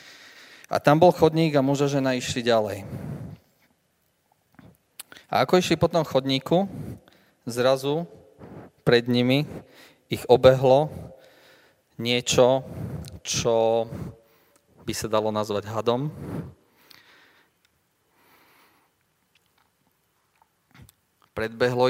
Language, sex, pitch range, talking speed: Slovak, male, 110-140 Hz, 75 wpm